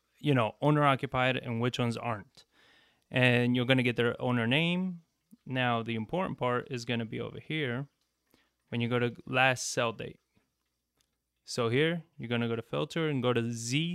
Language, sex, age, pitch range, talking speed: English, male, 20-39, 120-150 Hz, 195 wpm